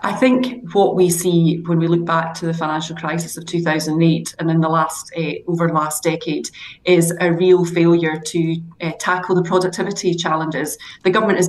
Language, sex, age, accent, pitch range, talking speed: English, female, 30-49, British, 165-180 Hz, 195 wpm